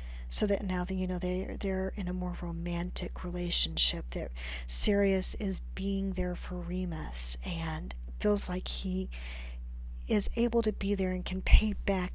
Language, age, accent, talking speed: English, 40-59, American, 165 wpm